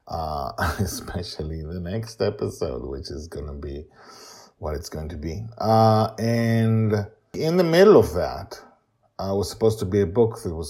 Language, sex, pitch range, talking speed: English, male, 80-105 Hz, 175 wpm